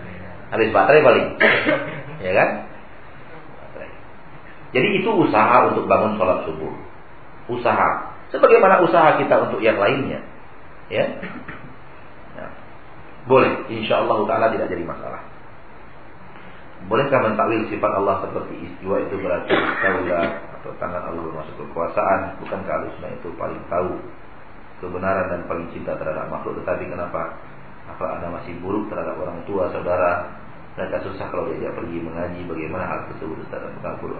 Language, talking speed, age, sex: Malay, 130 wpm, 40-59, male